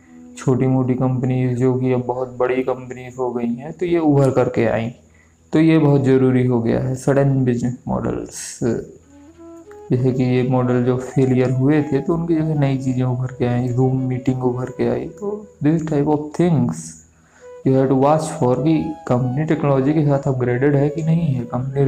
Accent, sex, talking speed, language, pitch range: native, male, 190 wpm, Hindi, 125-150 Hz